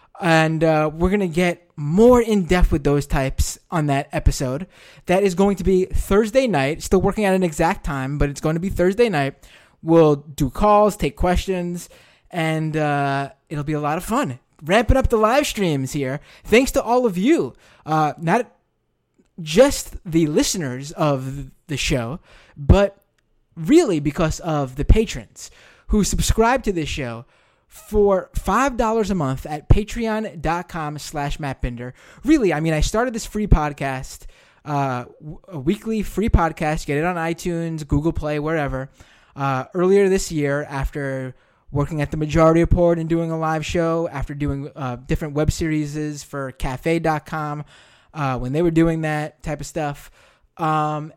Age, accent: 20-39, American